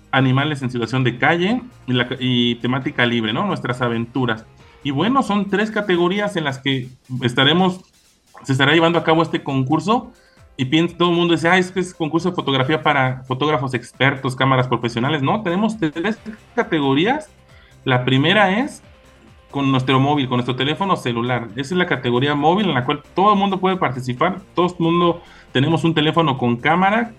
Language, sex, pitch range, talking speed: Spanish, male, 130-165 Hz, 185 wpm